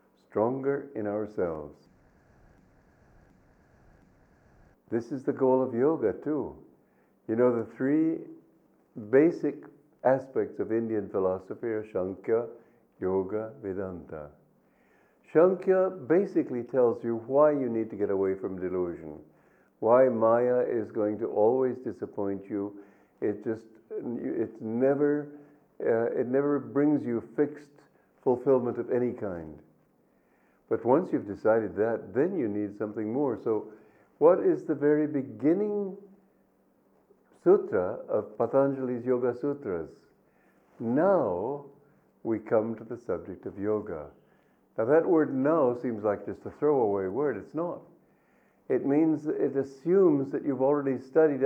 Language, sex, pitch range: English, male, 110-145 Hz